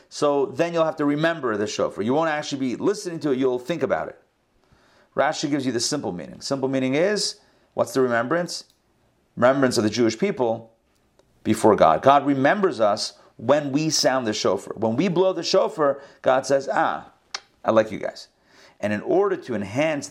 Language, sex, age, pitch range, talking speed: English, male, 40-59, 120-160 Hz, 190 wpm